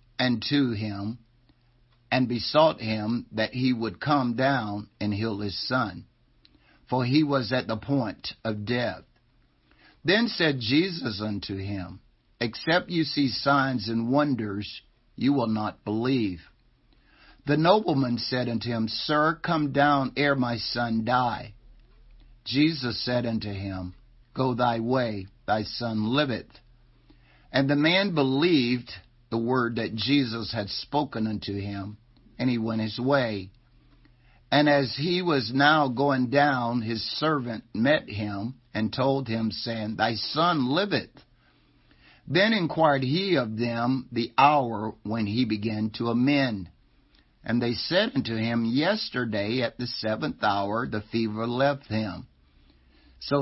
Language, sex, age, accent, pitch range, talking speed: English, male, 60-79, American, 110-135 Hz, 135 wpm